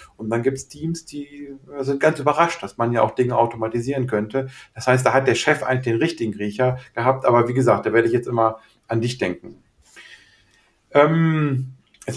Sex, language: male, German